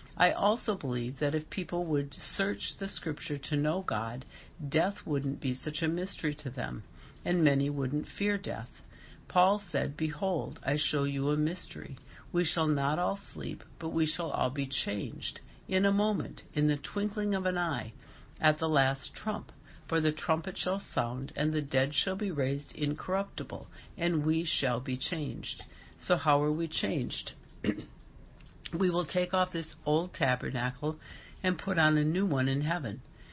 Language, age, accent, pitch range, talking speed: English, 60-79, American, 135-175 Hz, 170 wpm